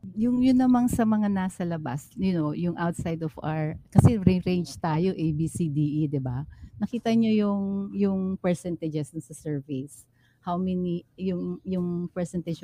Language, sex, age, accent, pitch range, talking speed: Filipino, female, 40-59, native, 160-200 Hz, 165 wpm